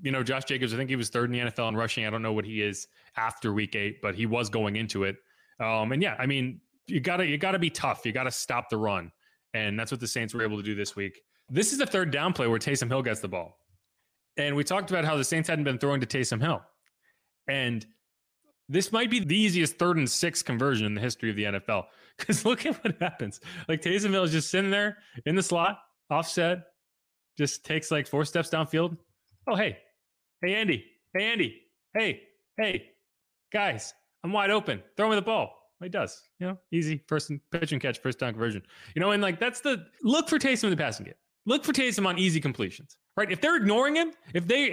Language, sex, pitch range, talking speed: English, male, 120-190 Hz, 230 wpm